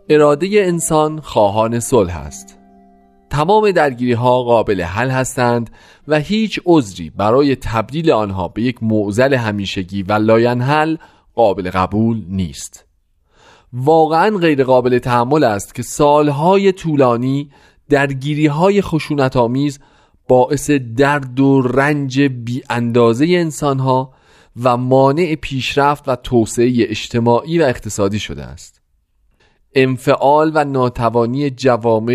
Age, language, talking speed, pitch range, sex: 40-59, Persian, 110 wpm, 105-145 Hz, male